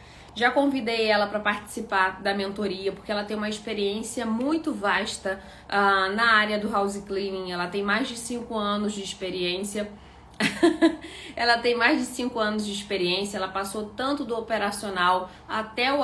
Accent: Brazilian